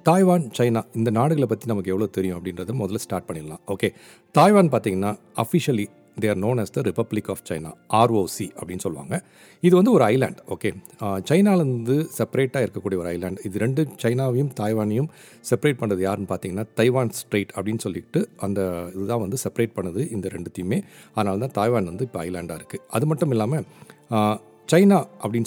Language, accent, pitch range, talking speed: Tamil, native, 95-140 Hz, 160 wpm